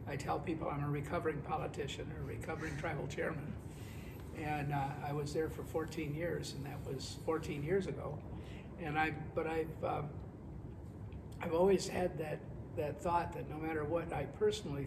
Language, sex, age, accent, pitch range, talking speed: English, male, 50-69, American, 135-160 Hz, 175 wpm